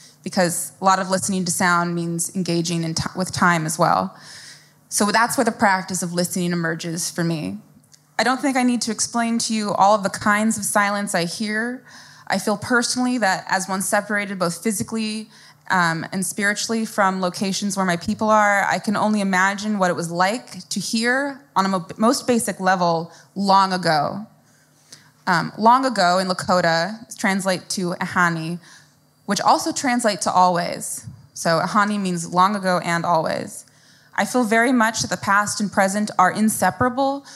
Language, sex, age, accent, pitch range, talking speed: English, female, 20-39, American, 175-220 Hz, 170 wpm